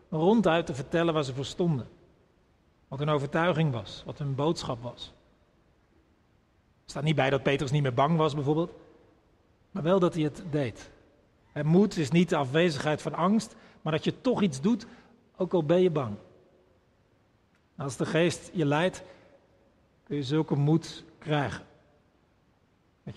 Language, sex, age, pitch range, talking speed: Dutch, male, 40-59, 130-165 Hz, 160 wpm